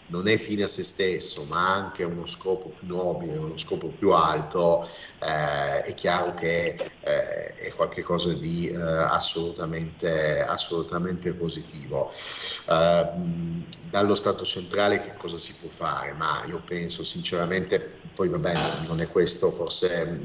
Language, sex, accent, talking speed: Italian, male, native, 140 wpm